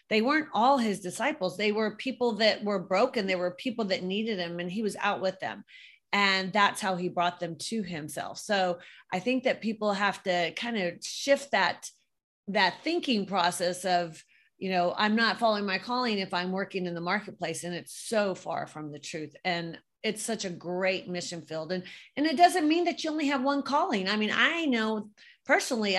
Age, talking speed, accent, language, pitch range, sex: 30-49, 205 wpm, American, English, 180-245 Hz, female